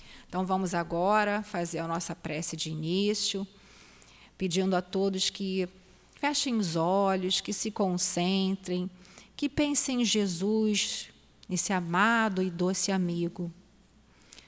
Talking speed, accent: 115 wpm, Brazilian